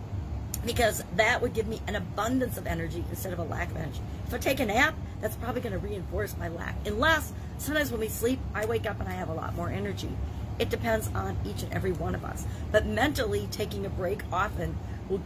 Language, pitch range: English, 95-150 Hz